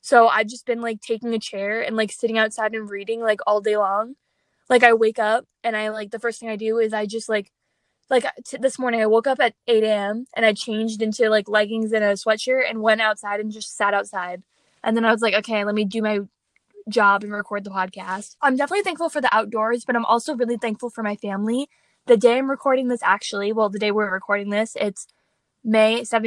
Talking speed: 230 wpm